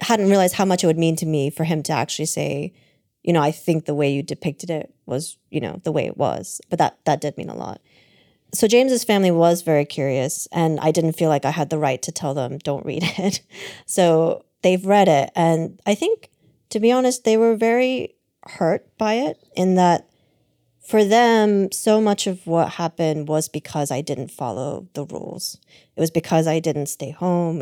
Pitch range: 155-180 Hz